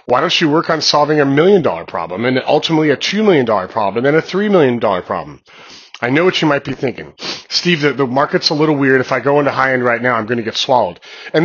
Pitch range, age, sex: 120-155 Hz, 30-49, male